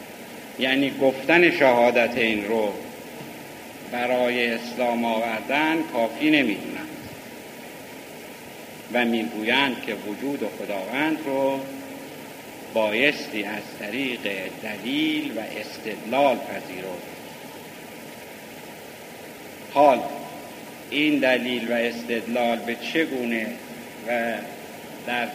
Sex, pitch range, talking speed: male, 120-150 Hz, 80 wpm